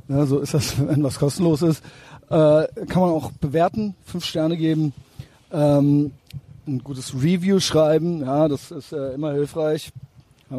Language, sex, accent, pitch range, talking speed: German, male, German, 130-155 Hz, 160 wpm